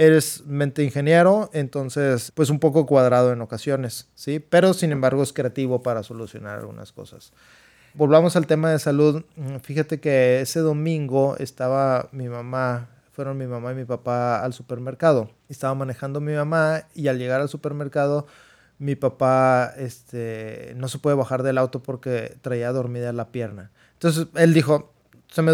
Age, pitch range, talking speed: 30-49, 125-155 Hz, 160 wpm